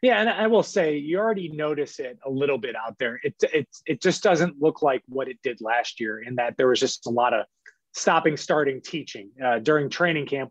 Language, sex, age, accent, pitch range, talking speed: English, male, 20-39, American, 130-160 Hz, 235 wpm